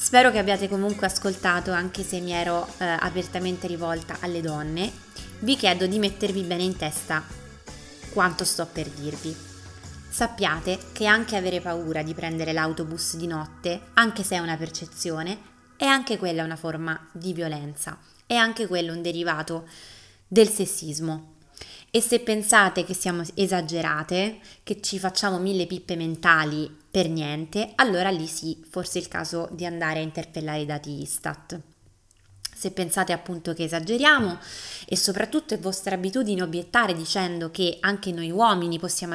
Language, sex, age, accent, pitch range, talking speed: Italian, female, 20-39, native, 160-200 Hz, 150 wpm